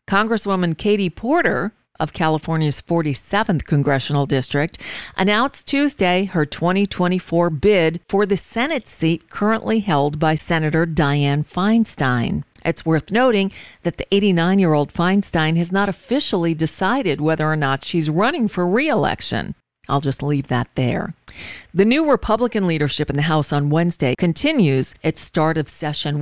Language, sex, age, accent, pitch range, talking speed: English, female, 50-69, American, 155-195 Hz, 135 wpm